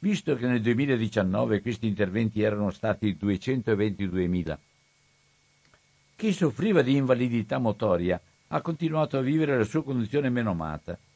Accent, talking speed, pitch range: native, 125 wpm, 105-145 Hz